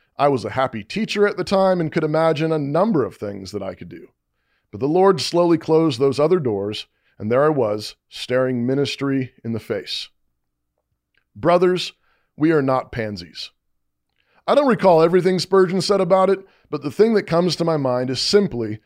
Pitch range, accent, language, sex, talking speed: 115-180 Hz, American, English, male, 190 wpm